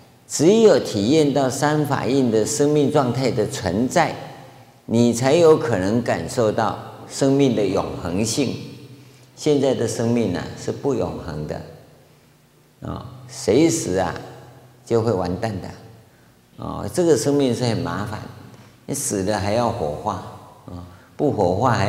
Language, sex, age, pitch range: Chinese, male, 50-69, 110-130 Hz